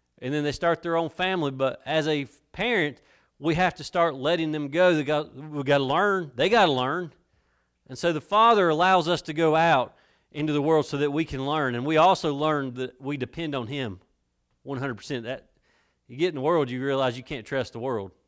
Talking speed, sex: 220 wpm, male